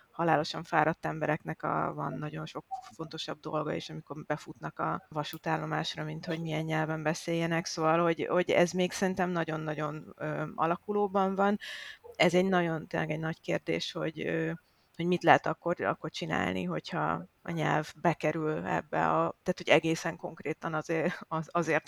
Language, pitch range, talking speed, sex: Hungarian, 155-180 Hz, 155 wpm, female